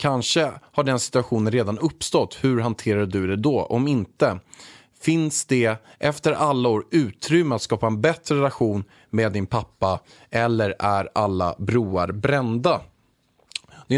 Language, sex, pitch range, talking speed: Swedish, male, 110-140 Hz, 140 wpm